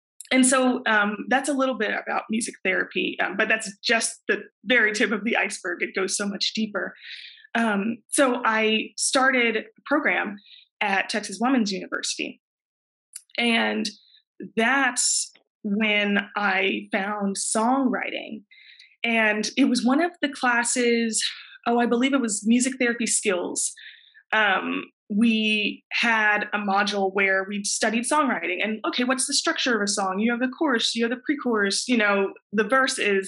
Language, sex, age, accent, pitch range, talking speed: English, female, 20-39, American, 210-260 Hz, 150 wpm